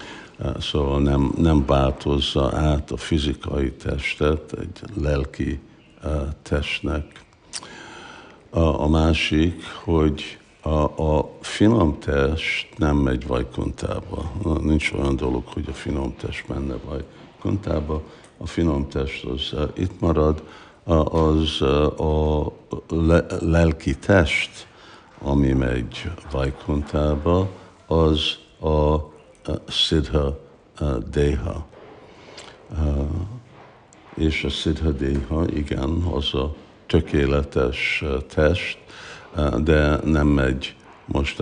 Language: Hungarian